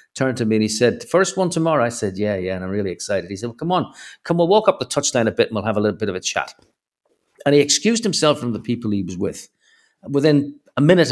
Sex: male